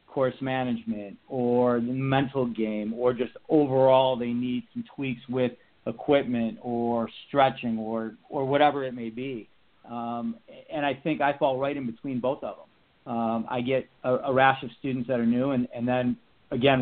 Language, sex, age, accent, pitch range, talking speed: English, male, 40-59, American, 120-135 Hz, 180 wpm